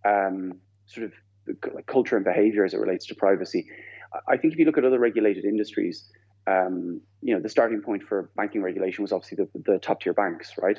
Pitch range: 95-125 Hz